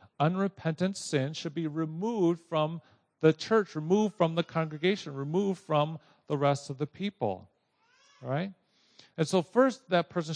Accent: American